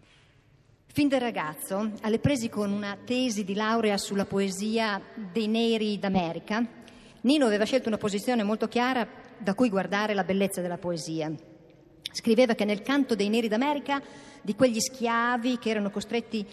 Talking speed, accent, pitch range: 155 wpm, native, 170-235 Hz